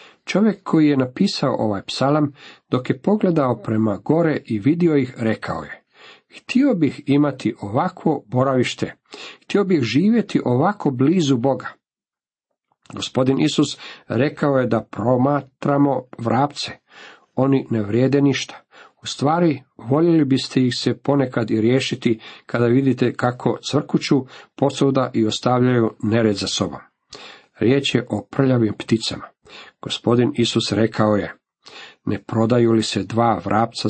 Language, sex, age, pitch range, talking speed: Croatian, male, 50-69, 110-145 Hz, 125 wpm